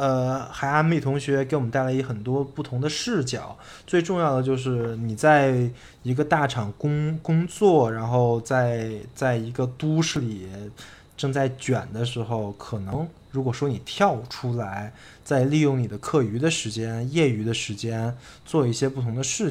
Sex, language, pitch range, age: male, Chinese, 110-140 Hz, 20-39